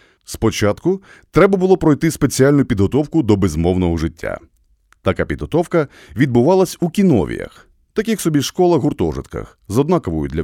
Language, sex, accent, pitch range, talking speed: Ukrainian, male, native, 95-155 Hz, 115 wpm